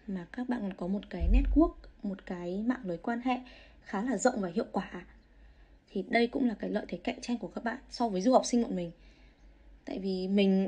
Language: Vietnamese